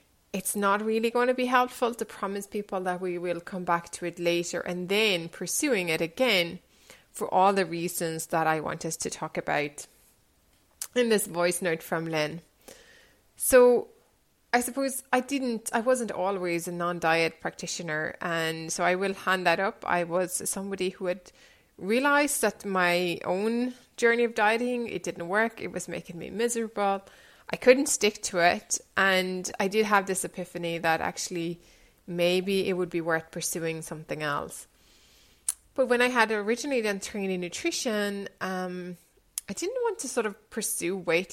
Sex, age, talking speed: female, 20-39, 170 wpm